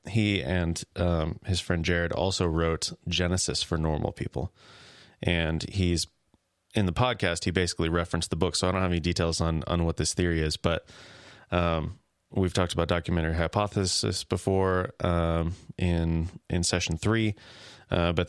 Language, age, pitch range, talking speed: English, 30-49, 85-100 Hz, 160 wpm